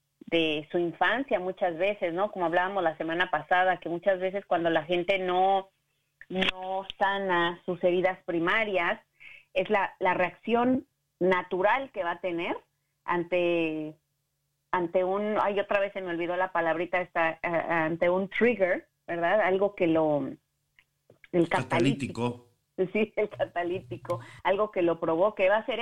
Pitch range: 170-215 Hz